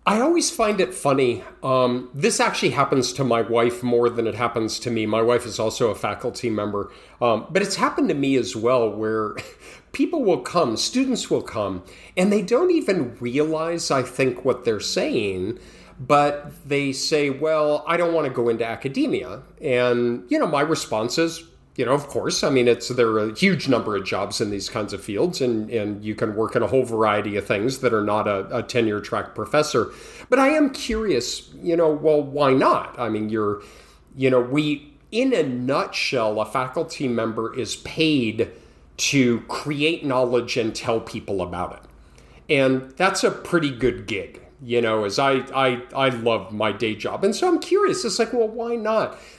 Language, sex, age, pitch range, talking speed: English, male, 40-59, 115-170 Hz, 195 wpm